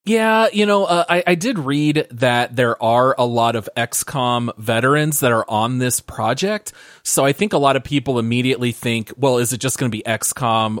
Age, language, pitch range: 30-49, English, 120-165 Hz